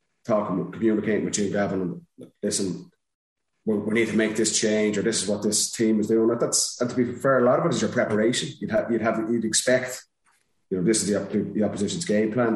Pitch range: 100-115 Hz